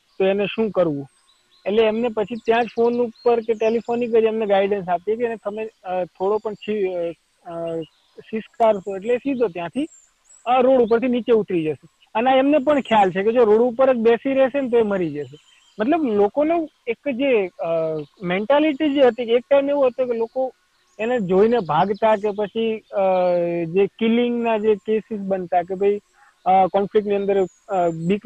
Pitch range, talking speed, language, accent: 195-235 Hz, 85 wpm, Gujarati, native